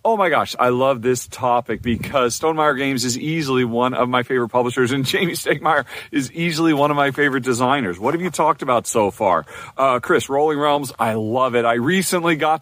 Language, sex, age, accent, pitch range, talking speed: English, male, 40-59, American, 120-180 Hz, 210 wpm